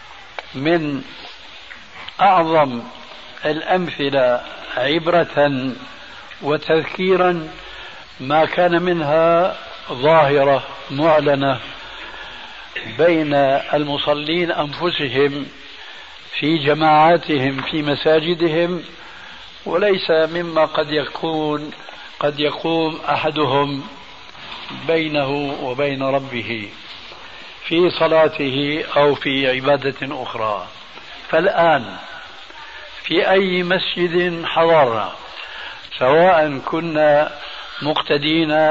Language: Arabic